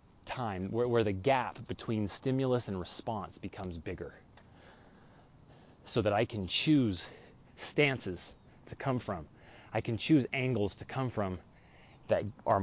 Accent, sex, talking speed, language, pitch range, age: American, male, 140 wpm, English, 100-130 Hz, 30-49